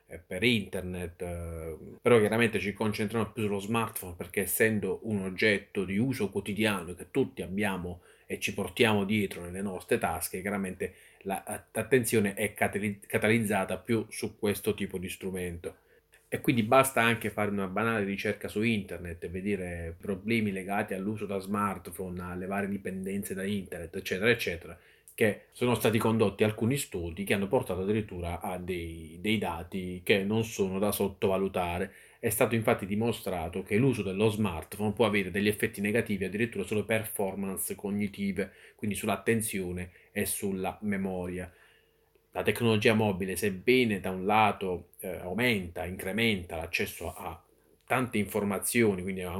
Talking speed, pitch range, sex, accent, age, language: 140 wpm, 95-110 Hz, male, native, 30-49, Italian